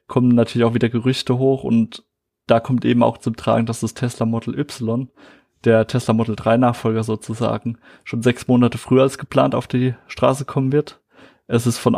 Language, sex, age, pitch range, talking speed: German, male, 20-39, 115-130 Hz, 190 wpm